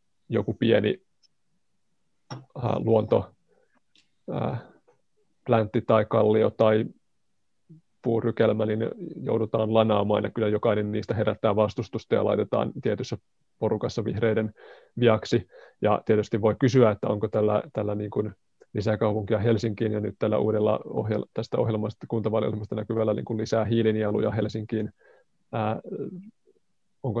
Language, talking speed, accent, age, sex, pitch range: Finnish, 110 wpm, native, 30-49, male, 105-115 Hz